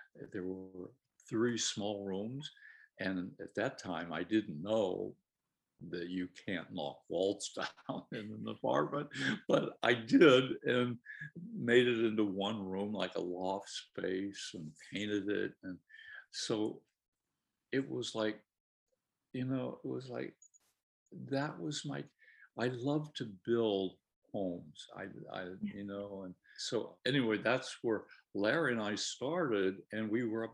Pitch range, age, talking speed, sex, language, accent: 95-125 Hz, 60-79, 140 wpm, male, English, American